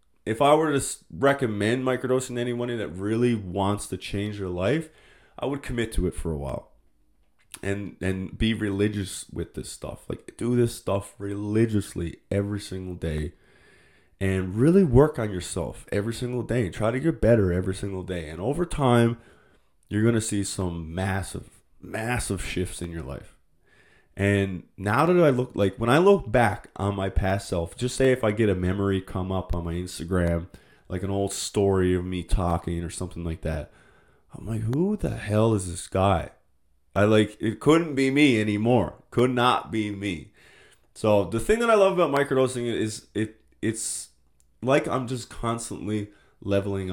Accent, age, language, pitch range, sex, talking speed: American, 20-39, English, 90-120 Hz, male, 180 wpm